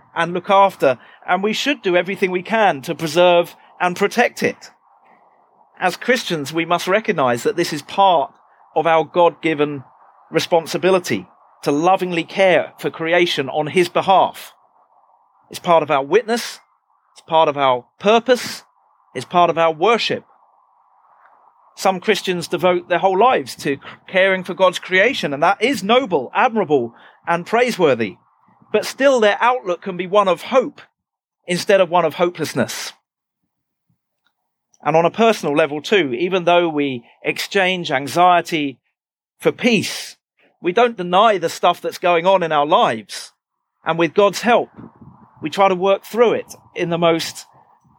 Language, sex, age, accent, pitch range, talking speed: English, male, 40-59, British, 165-215 Hz, 150 wpm